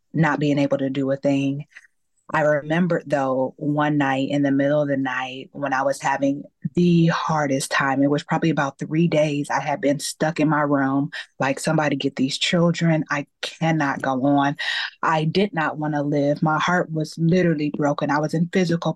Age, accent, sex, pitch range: 20-39, American, female, 140-165 Hz